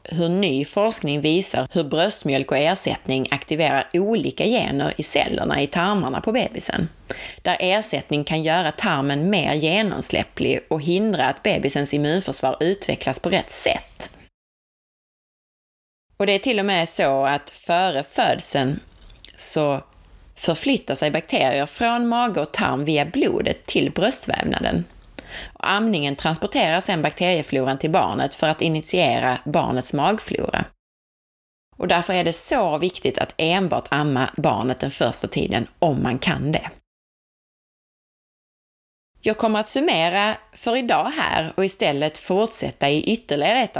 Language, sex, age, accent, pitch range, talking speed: Swedish, female, 30-49, native, 140-195 Hz, 130 wpm